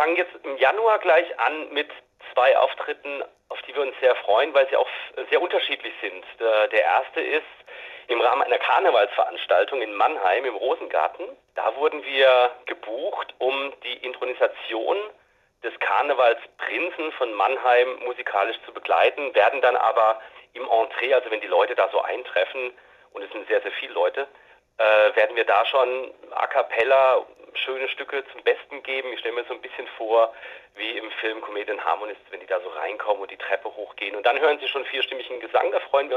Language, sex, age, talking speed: German, male, 40-59, 180 wpm